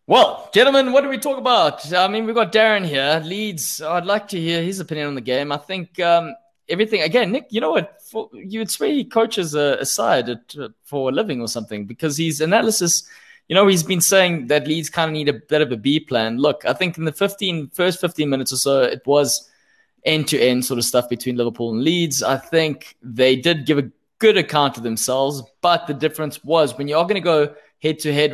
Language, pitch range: English, 130-170 Hz